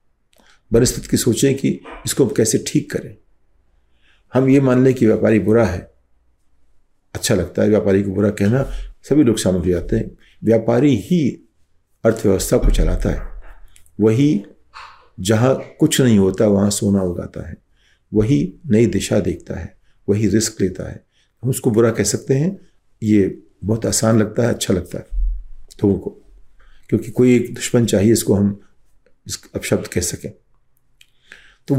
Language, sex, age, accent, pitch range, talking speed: Hindi, male, 50-69, native, 100-125 Hz, 155 wpm